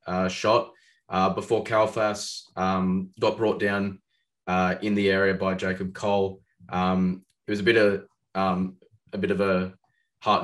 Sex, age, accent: male, 20-39, Australian